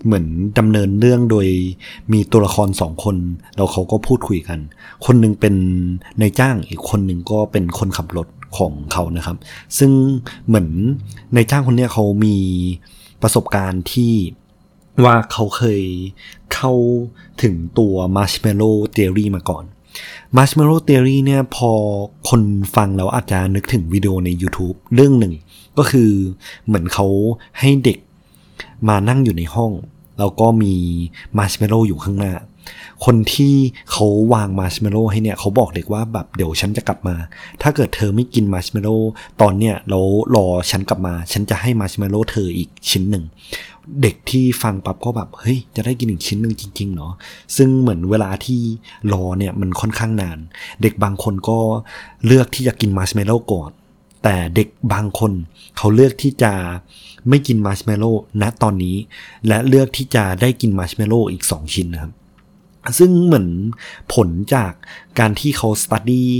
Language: Thai